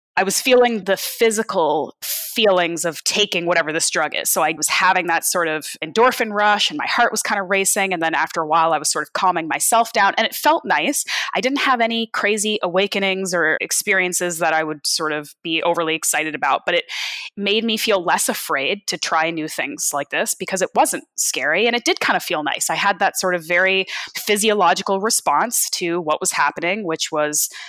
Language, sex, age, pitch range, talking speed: English, female, 20-39, 165-225 Hz, 215 wpm